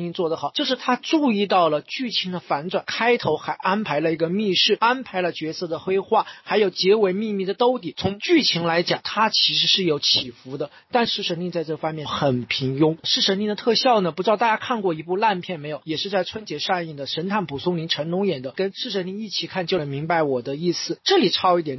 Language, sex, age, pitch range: Chinese, male, 40-59, 160-210 Hz